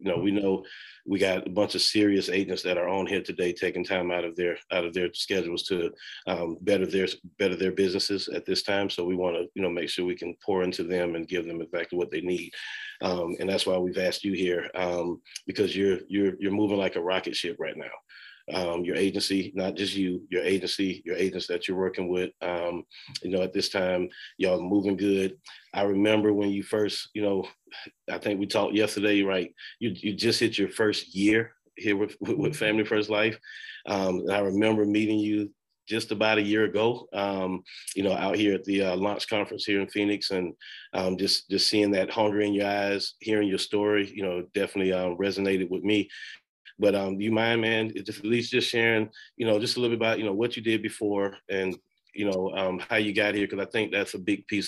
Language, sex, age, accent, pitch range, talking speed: English, male, 30-49, American, 95-105 Hz, 225 wpm